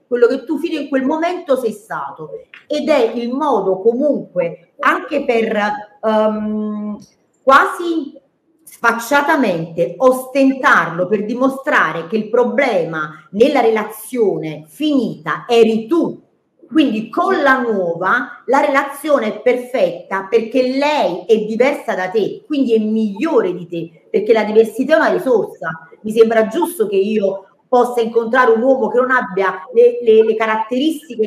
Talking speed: 135 wpm